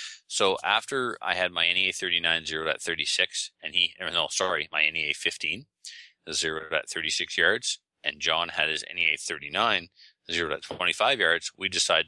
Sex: male